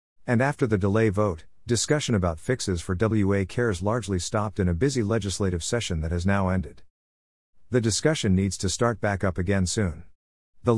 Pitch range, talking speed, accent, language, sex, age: 90-115 Hz, 180 wpm, American, English, male, 50-69